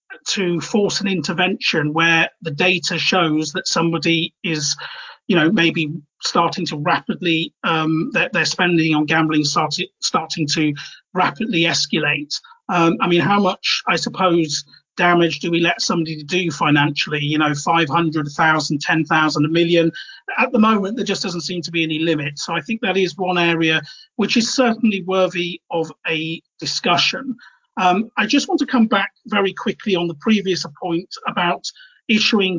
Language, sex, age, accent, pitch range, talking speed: English, male, 40-59, British, 165-195 Hz, 170 wpm